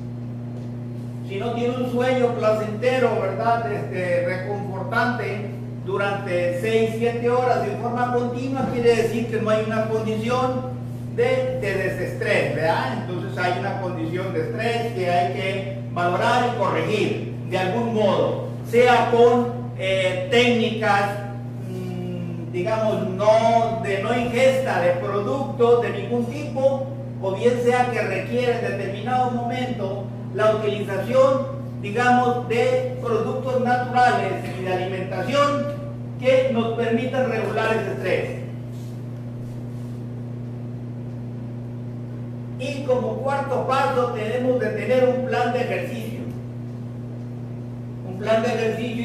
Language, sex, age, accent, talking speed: Spanish, male, 50-69, Mexican, 115 wpm